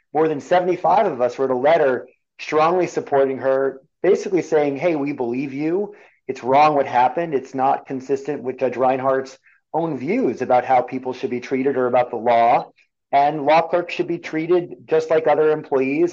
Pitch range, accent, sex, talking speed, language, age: 130-165 Hz, American, male, 180 wpm, English, 30-49